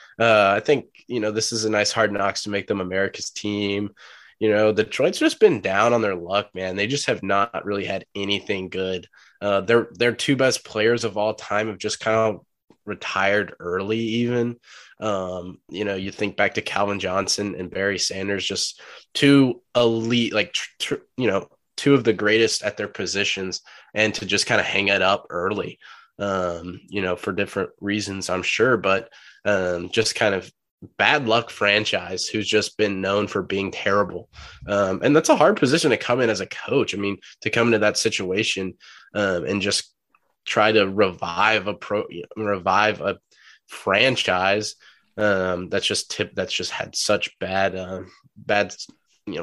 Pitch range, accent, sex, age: 95-110 Hz, American, male, 20-39